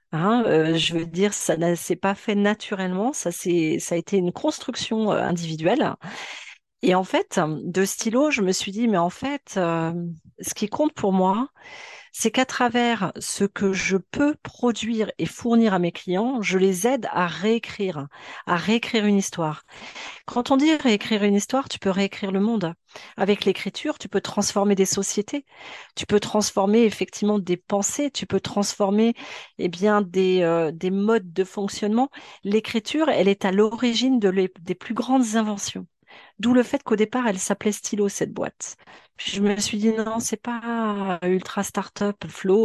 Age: 40-59